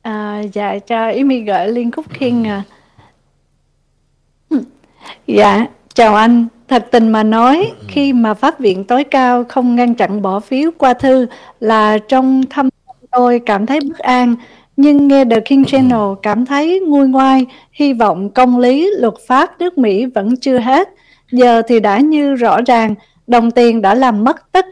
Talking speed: 165 wpm